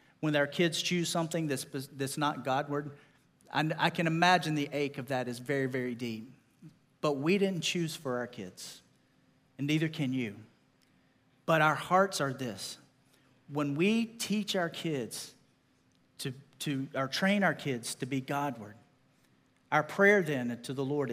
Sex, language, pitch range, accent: male, English, 125-160 Hz, American